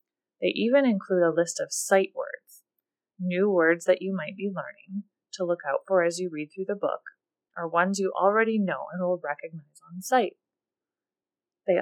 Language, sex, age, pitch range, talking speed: English, female, 30-49, 170-210 Hz, 185 wpm